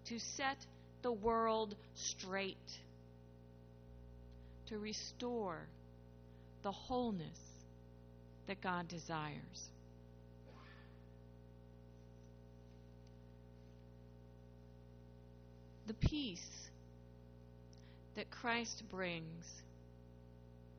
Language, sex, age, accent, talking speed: English, female, 40-59, American, 50 wpm